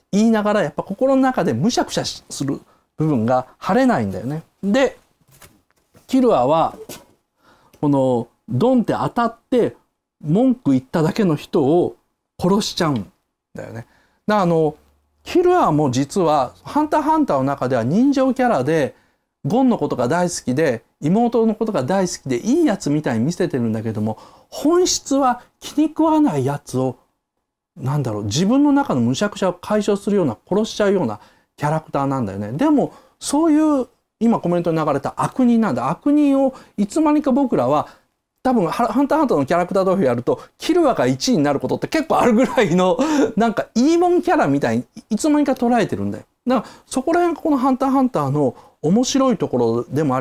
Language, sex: Japanese, male